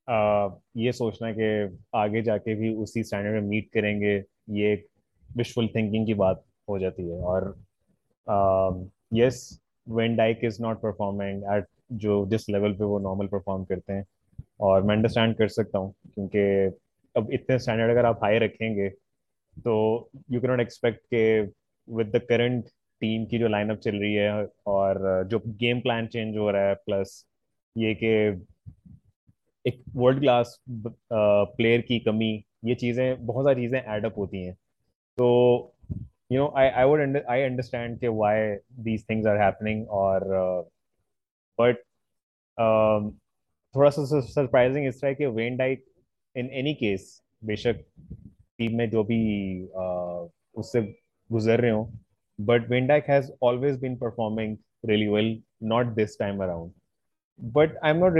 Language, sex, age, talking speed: Urdu, male, 20-39, 150 wpm